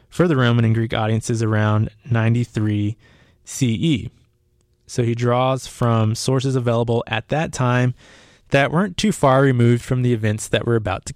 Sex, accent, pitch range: male, American, 115-145 Hz